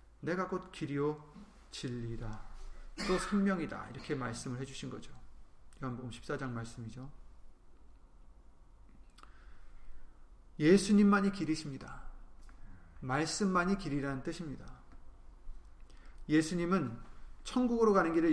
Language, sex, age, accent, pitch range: Korean, male, 30-49, native, 125-185 Hz